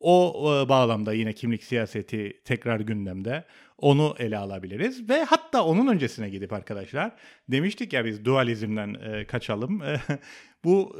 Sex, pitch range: male, 110-185 Hz